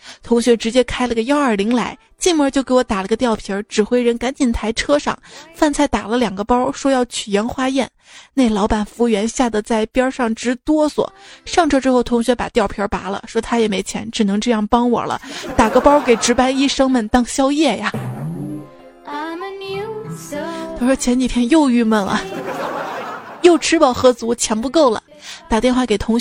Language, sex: Chinese, female